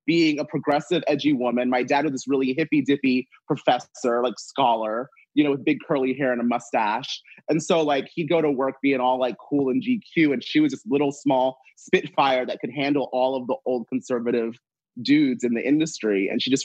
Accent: American